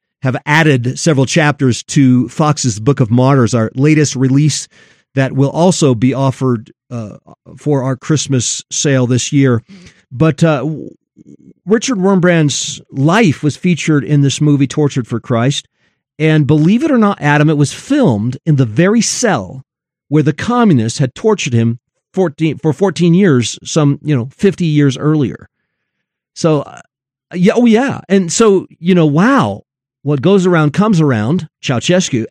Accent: American